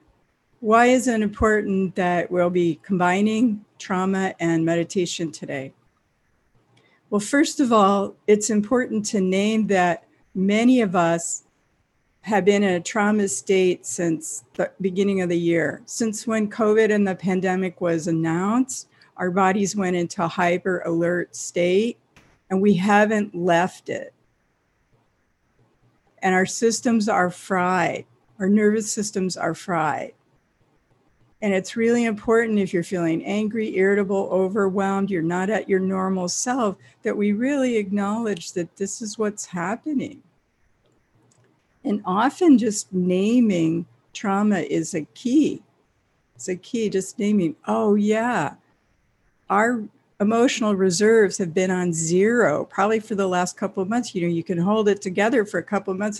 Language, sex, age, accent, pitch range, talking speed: English, female, 50-69, American, 180-215 Hz, 140 wpm